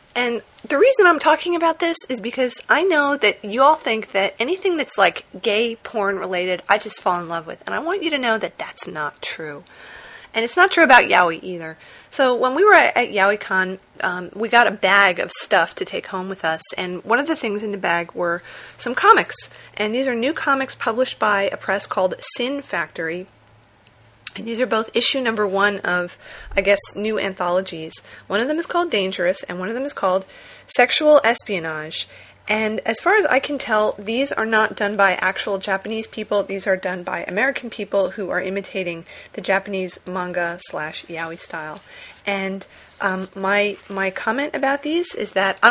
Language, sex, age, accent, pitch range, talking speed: English, female, 30-49, American, 190-255 Hz, 200 wpm